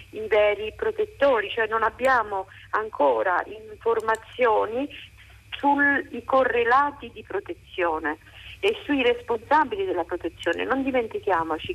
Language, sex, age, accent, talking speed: Italian, female, 50-69, native, 95 wpm